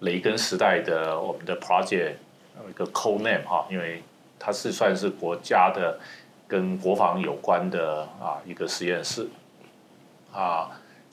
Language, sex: Chinese, male